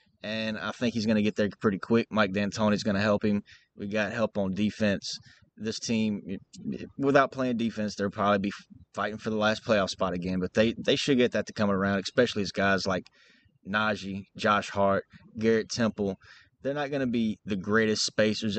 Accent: American